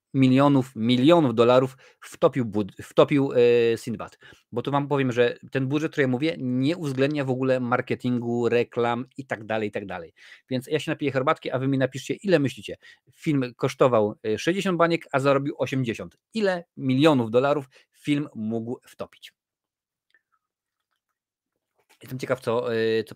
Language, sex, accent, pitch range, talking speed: Polish, male, native, 115-140 Hz, 155 wpm